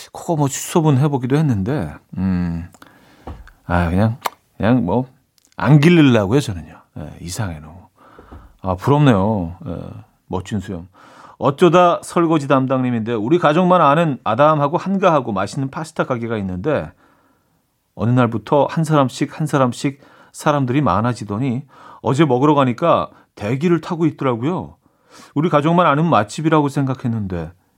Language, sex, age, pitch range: Korean, male, 40-59, 105-155 Hz